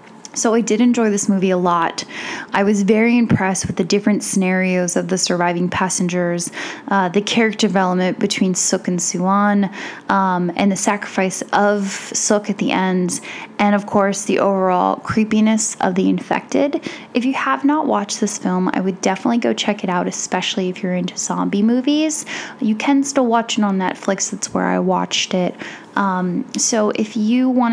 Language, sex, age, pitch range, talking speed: English, female, 10-29, 190-235 Hz, 180 wpm